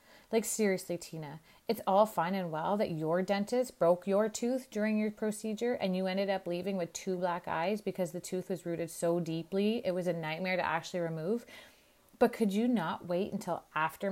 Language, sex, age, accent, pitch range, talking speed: English, female, 30-49, American, 175-210 Hz, 200 wpm